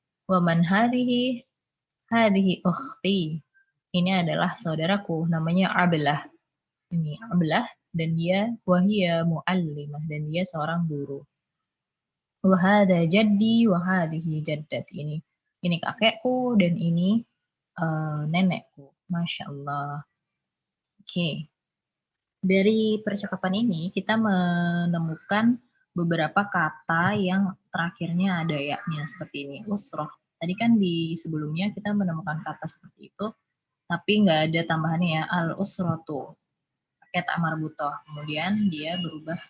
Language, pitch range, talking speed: Indonesian, 155-190 Hz, 100 wpm